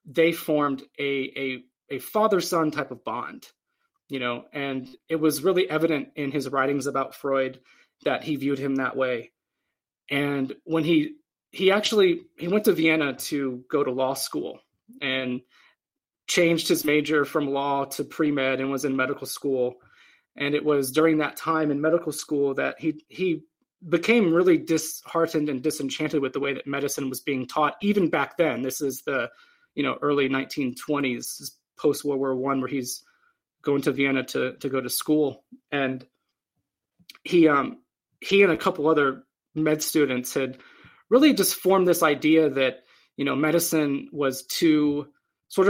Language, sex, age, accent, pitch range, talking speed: English, male, 30-49, American, 135-165 Hz, 165 wpm